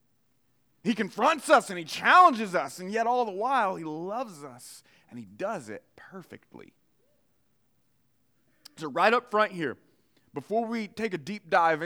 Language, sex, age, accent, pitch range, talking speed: English, male, 30-49, American, 150-205 Hz, 155 wpm